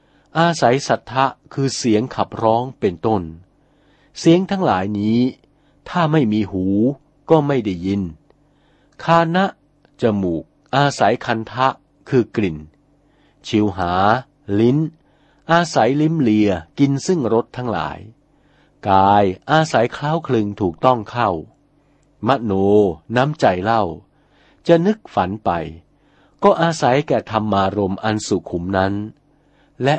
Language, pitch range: Thai, 100-145 Hz